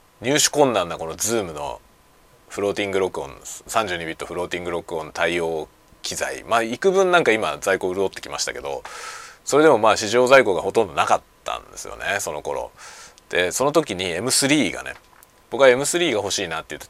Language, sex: Japanese, male